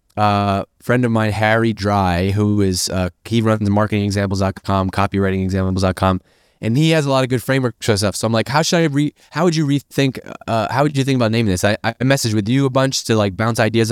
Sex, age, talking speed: male, 20-39, 230 wpm